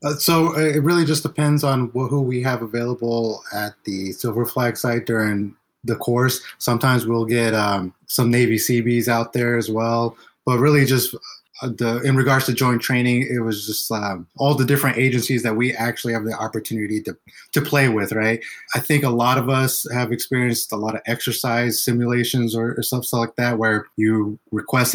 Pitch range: 110-125 Hz